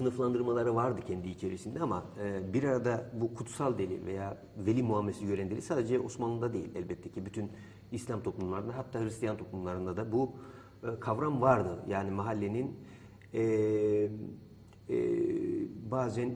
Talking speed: 115 wpm